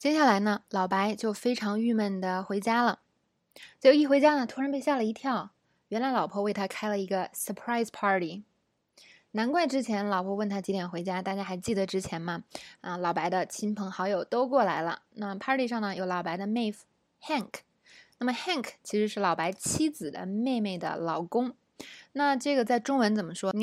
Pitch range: 185-235 Hz